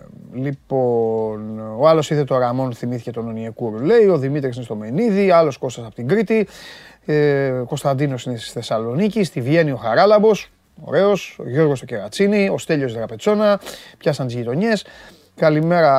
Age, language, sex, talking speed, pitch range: 30-49, Greek, male, 145 wpm, 125-170 Hz